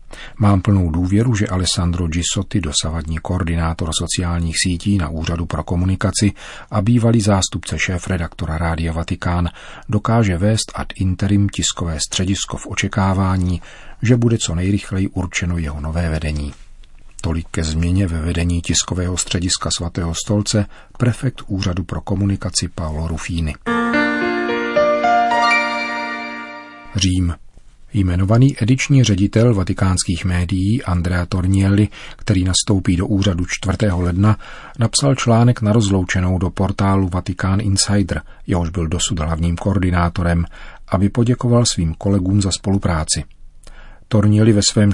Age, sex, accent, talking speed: 40-59, male, native, 120 wpm